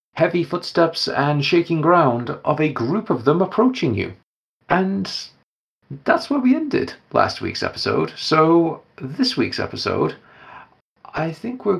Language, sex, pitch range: English, male, 100-135 Hz